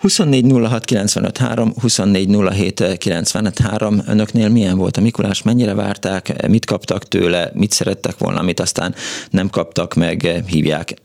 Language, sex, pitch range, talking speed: Hungarian, male, 90-110 Hz, 115 wpm